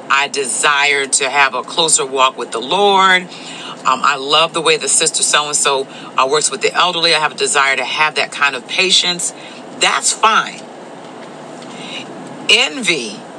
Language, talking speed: English, 155 wpm